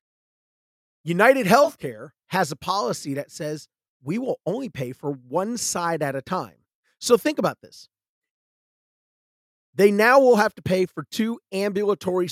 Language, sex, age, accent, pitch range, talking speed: English, male, 40-59, American, 150-210 Hz, 145 wpm